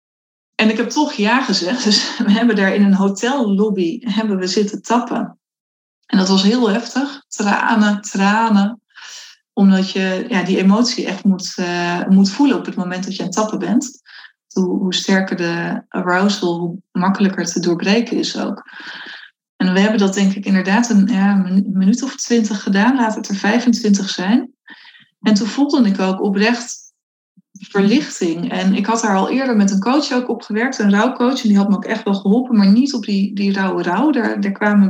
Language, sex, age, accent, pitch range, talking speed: Dutch, female, 20-39, Dutch, 195-235 Hz, 185 wpm